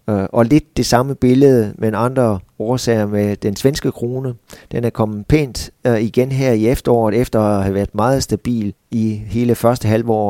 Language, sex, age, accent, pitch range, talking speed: Danish, male, 30-49, native, 105-125 Hz, 185 wpm